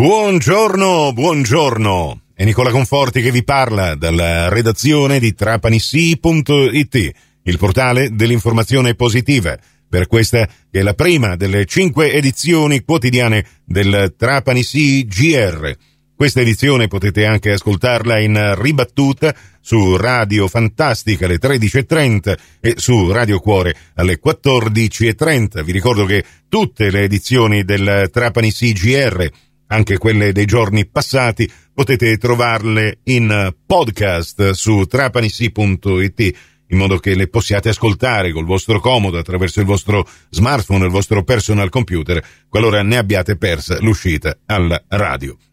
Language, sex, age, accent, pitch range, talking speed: Italian, male, 50-69, native, 100-125 Hz, 120 wpm